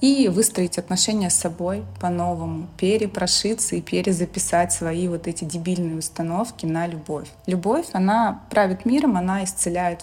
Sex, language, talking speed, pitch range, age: female, Russian, 140 wpm, 175-210 Hz, 20-39